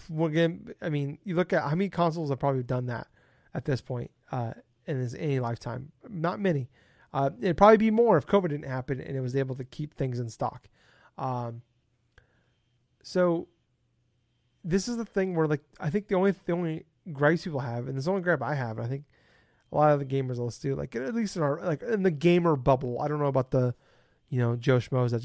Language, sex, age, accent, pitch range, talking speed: English, male, 30-49, American, 125-165 Hz, 220 wpm